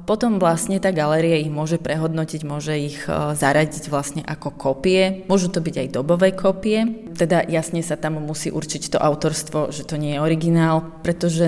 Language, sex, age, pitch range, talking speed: Slovak, female, 20-39, 150-175 Hz, 180 wpm